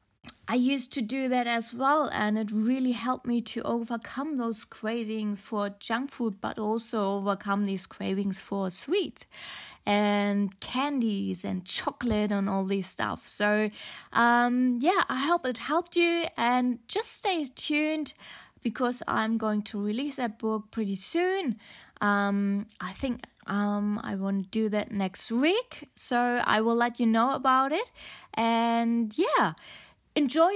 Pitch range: 205-280 Hz